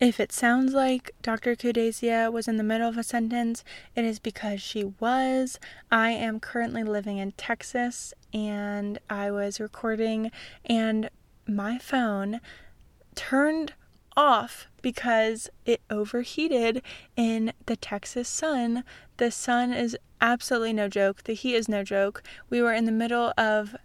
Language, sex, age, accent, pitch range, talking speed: English, female, 20-39, American, 205-230 Hz, 145 wpm